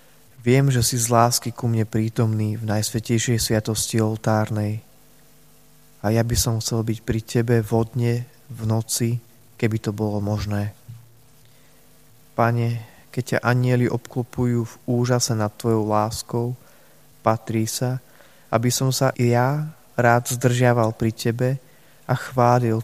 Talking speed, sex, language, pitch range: 130 wpm, male, Slovak, 110-125 Hz